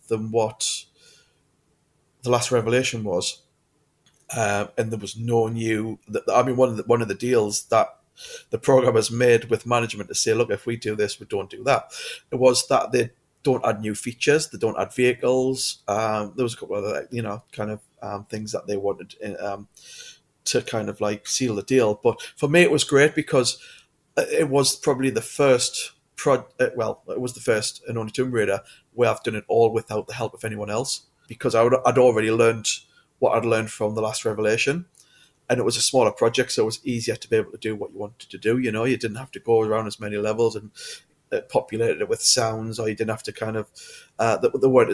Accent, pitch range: British, 110-145 Hz